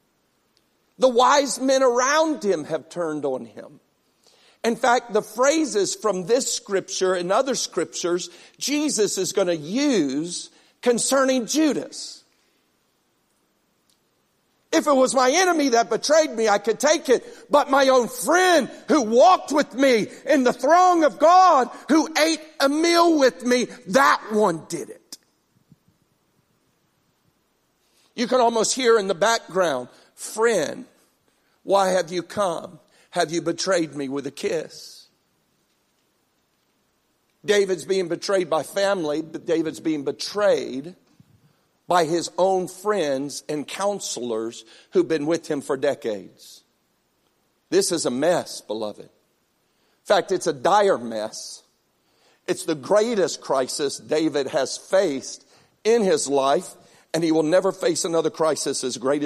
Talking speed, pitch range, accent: 135 wpm, 170-275 Hz, American